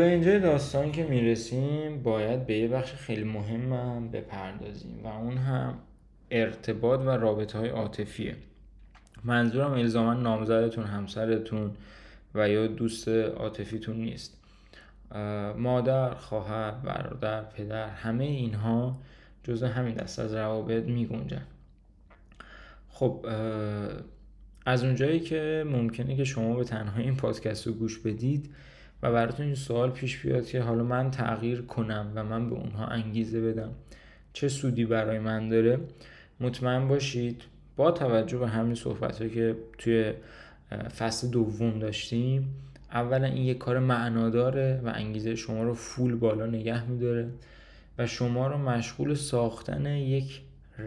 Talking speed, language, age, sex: 130 wpm, Persian, 20-39, male